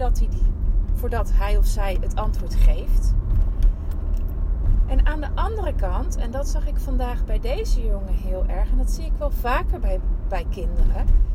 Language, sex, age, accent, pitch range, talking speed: Dutch, female, 30-49, Dutch, 80-95 Hz, 165 wpm